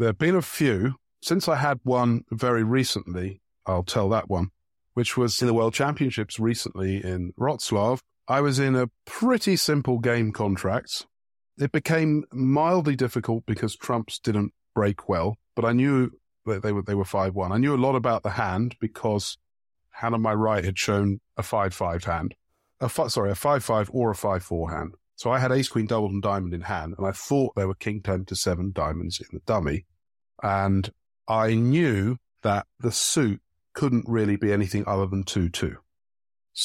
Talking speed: 190 wpm